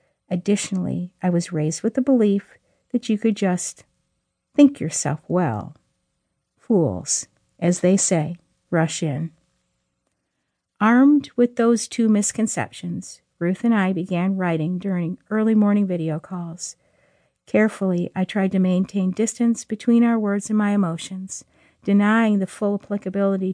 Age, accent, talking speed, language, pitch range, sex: 50-69, American, 130 wpm, English, 175-220 Hz, female